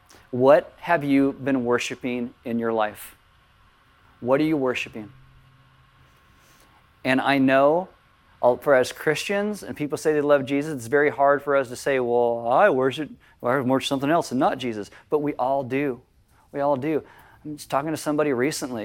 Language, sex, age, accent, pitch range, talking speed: English, male, 40-59, American, 115-150 Hz, 170 wpm